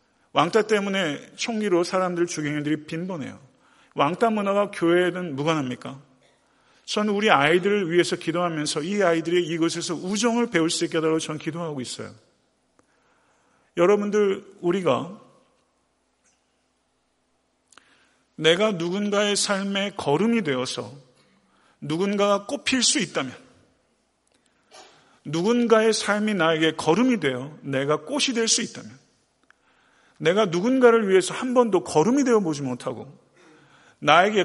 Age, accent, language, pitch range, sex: 40-59, native, Korean, 150-215 Hz, male